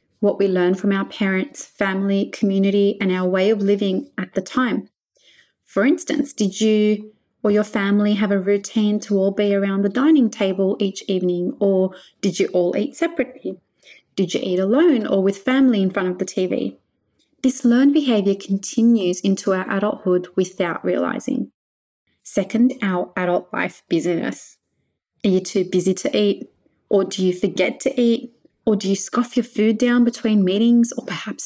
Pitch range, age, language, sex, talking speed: 185-230 Hz, 30-49, English, female, 170 wpm